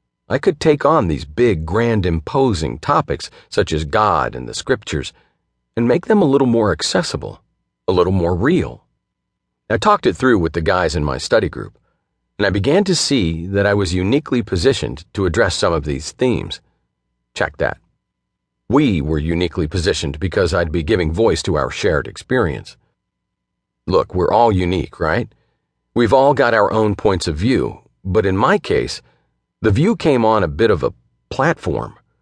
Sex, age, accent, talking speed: male, 50-69, American, 175 wpm